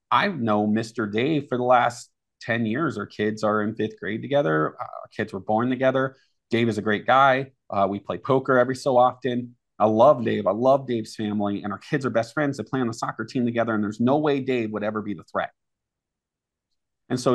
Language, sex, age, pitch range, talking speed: English, male, 30-49, 105-125 Hz, 225 wpm